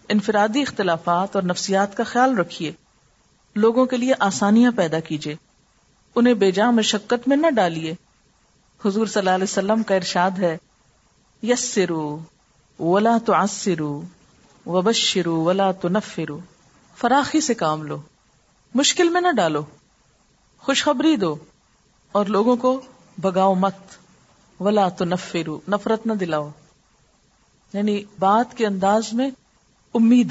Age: 50-69